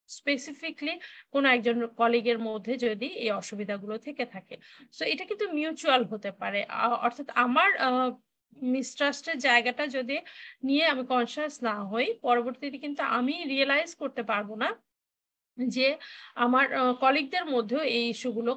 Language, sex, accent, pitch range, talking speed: Bengali, female, native, 235-285 Hz, 55 wpm